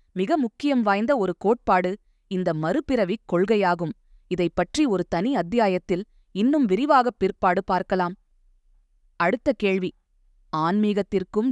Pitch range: 180-235 Hz